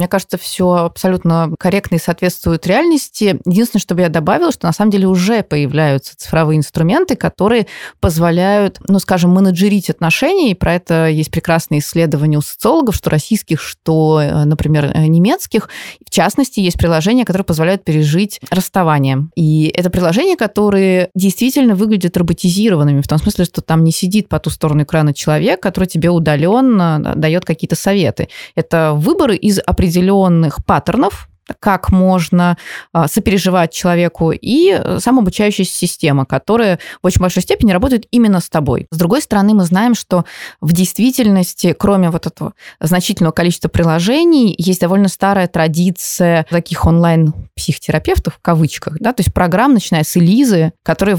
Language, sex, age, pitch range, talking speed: Russian, female, 20-39, 165-200 Hz, 150 wpm